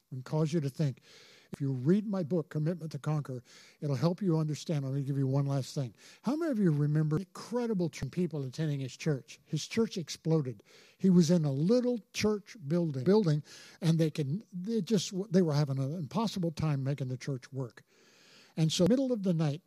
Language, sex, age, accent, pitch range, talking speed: English, male, 50-69, American, 145-195 Hz, 205 wpm